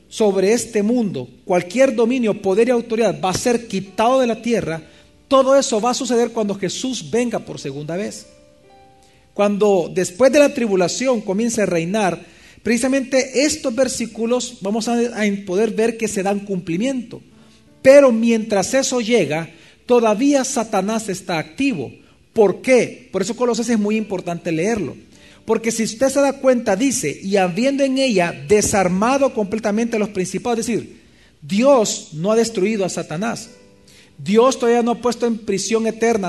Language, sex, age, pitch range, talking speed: Spanish, male, 40-59, 185-240 Hz, 155 wpm